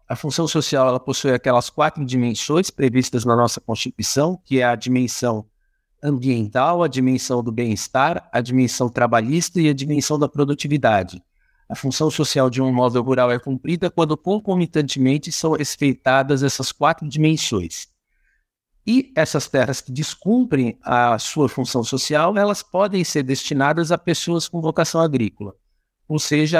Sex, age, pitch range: male, 60-79, 130-165 Hz